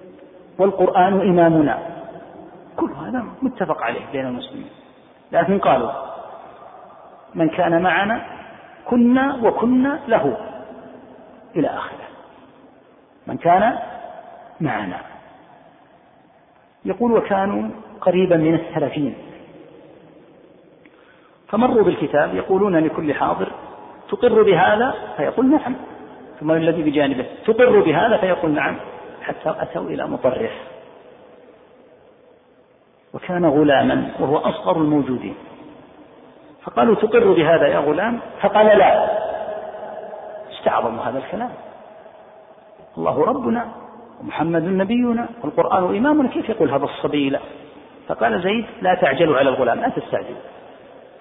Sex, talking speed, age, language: male, 95 wpm, 50-69, Arabic